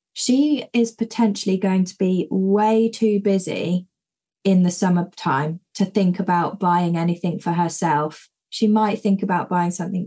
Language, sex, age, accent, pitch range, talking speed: English, female, 20-39, British, 175-210 Hz, 150 wpm